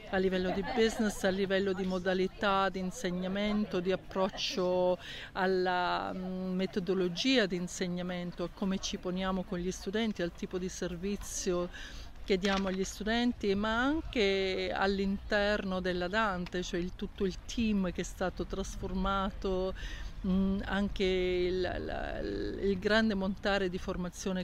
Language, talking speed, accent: Italian, 130 wpm, native